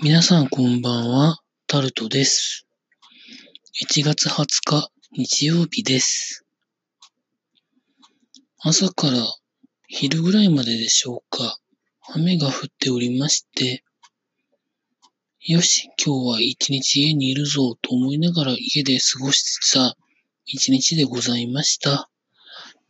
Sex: male